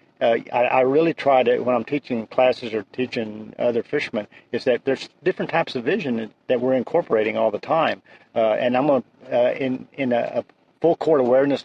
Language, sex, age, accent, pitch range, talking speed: English, male, 50-69, American, 115-135 Hz, 205 wpm